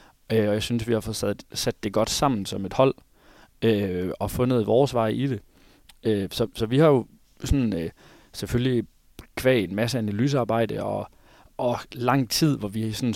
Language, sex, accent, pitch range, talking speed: Danish, male, native, 105-125 Hz, 190 wpm